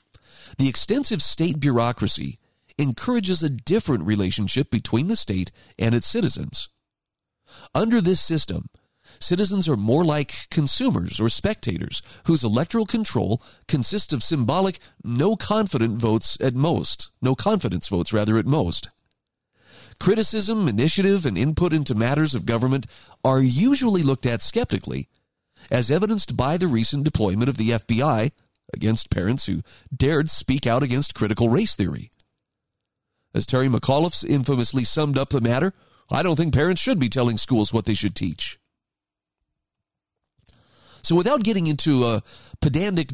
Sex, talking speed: male, 135 wpm